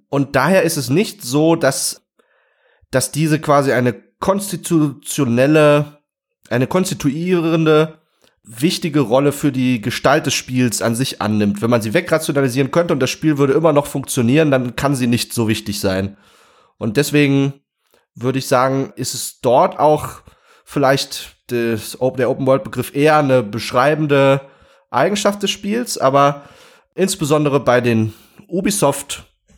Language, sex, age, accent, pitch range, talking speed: German, male, 30-49, German, 115-150 Hz, 140 wpm